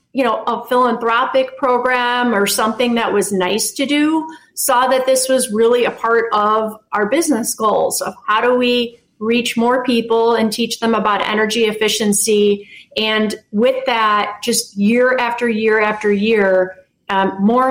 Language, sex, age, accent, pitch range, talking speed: English, female, 30-49, American, 215-245 Hz, 160 wpm